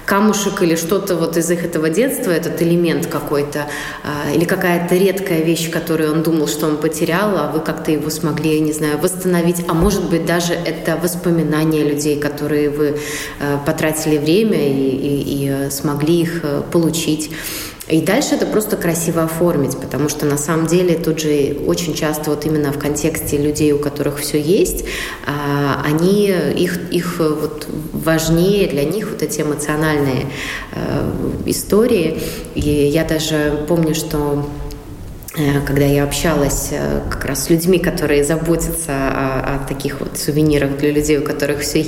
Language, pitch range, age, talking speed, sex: Russian, 145-170 Hz, 20-39, 150 wpm, female